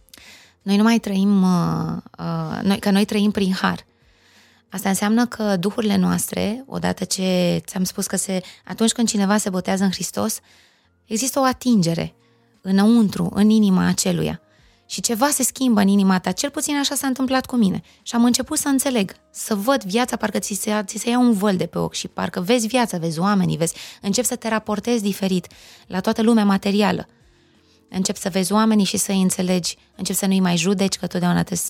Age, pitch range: 20-39, 185-230 Hz